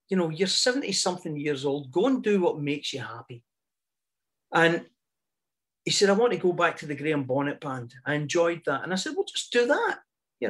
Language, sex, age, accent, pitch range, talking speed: English, male, 40-59, British, 155-220 Hz, 210 wpm